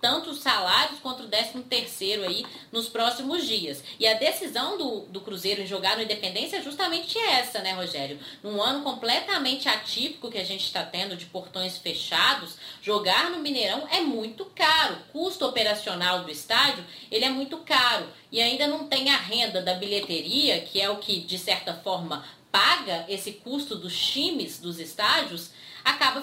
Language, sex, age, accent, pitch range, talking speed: Portuguese, female, 20-39, Brazilian, 195-275 Hz, 170 wpm